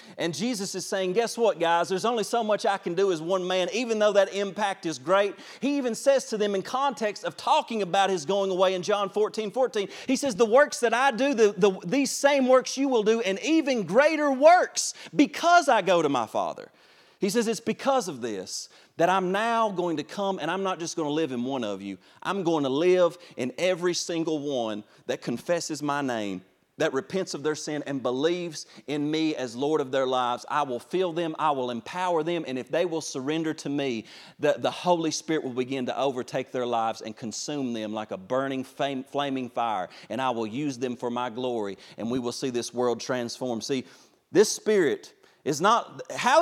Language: English